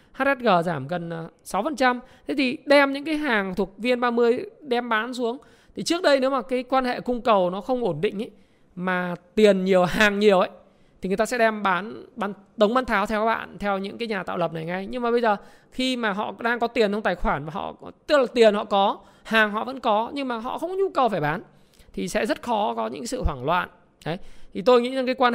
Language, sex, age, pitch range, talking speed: Vietnamese, male, 20-39, 195-245 Hz, 250 wpm